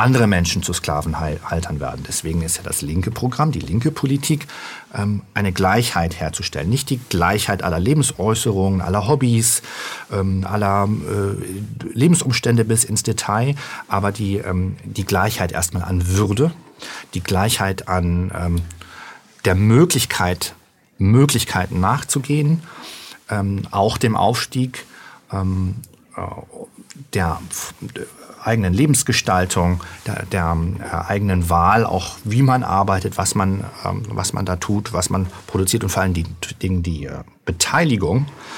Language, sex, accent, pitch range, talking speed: German, male, German, 90-115 Hz, 110 wpm